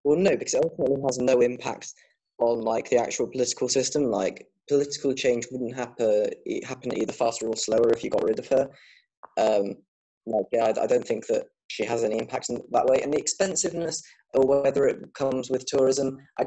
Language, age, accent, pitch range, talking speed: English, 20-39, British, 115-175 Hz, 200 wpm